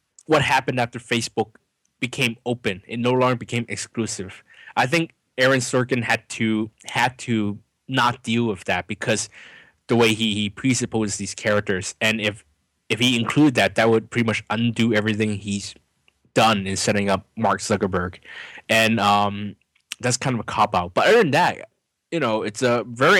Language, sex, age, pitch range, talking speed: English, male, 20-39, 105-120 Hz, 175 wpm